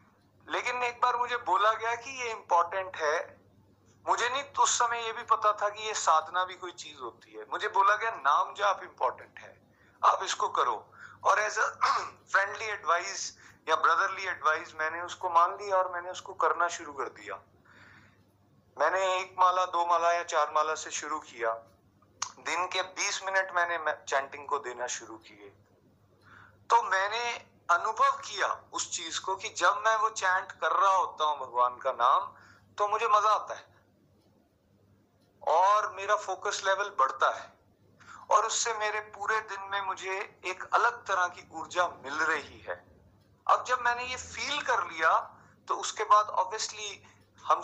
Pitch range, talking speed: 145-205 Hz, 130 wpm